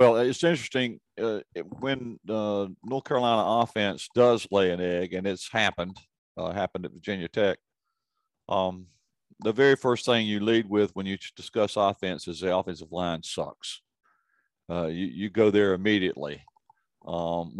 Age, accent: 50-69, American